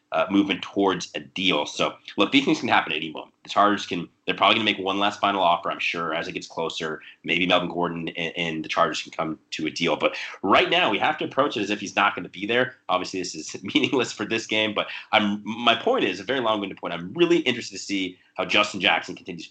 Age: 30-49